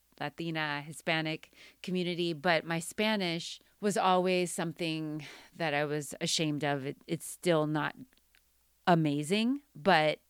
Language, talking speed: English, 110 wpm